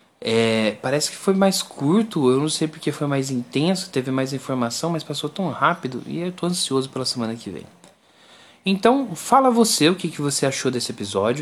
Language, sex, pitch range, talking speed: Portuguese, male, 130-195 Hz, 200 wpm